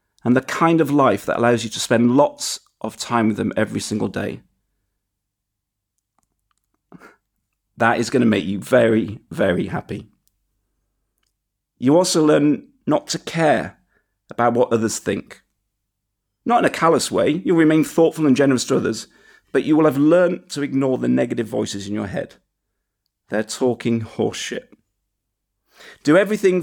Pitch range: 100-145 Hz